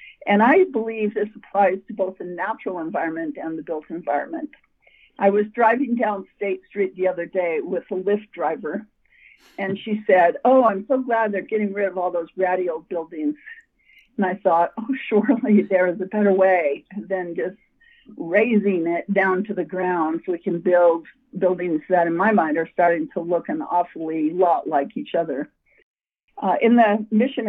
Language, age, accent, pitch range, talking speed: English, 50-69, American, 185-230 Hz, 180 wpm